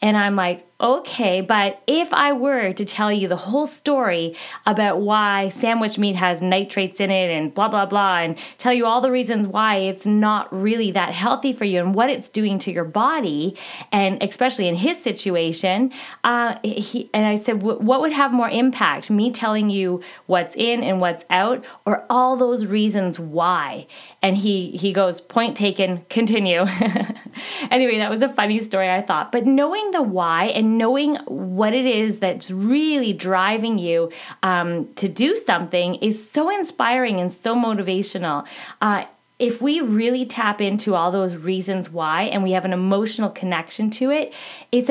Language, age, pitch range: English, 20-39, 185-235 Hz